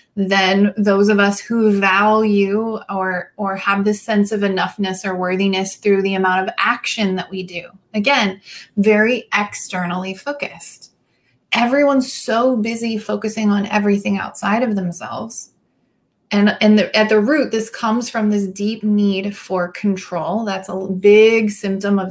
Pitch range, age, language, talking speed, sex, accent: 195-230 Hz, 20-39, English, 150 wpm, female, American